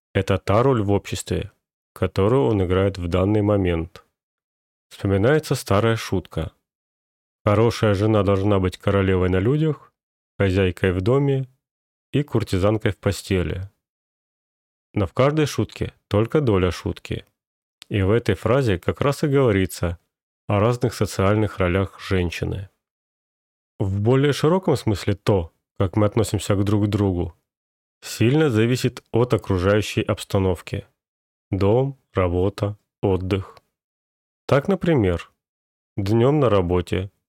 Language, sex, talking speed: Russian, male, 115 wpm